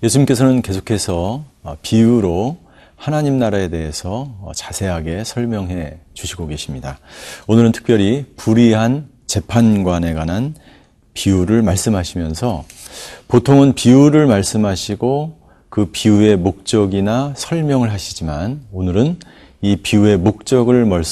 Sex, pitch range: male, 90-125 Hz